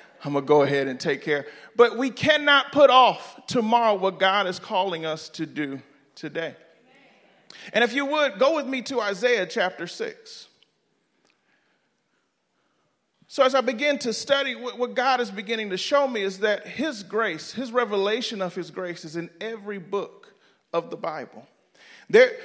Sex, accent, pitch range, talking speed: male, American, 175-255 Hz, 170 wpm